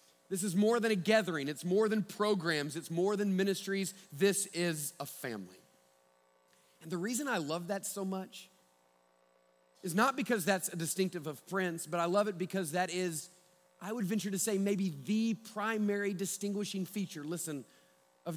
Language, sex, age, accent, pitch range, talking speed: English, male, 40-59, American, 160-225 Hz, 175 wpm